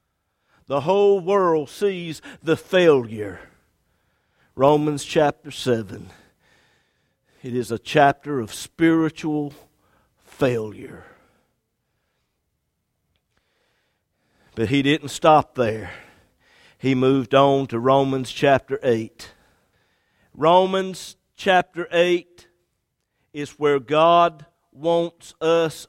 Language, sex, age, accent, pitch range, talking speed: English, male, 50-69, American, 140-200 Hz, 85 wpm